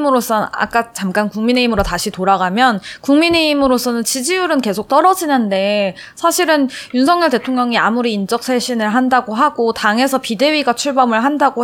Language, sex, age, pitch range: Korean, female, 20-39, 200-265 Hz